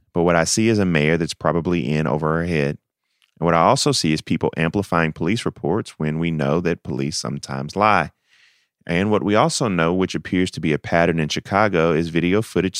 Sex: male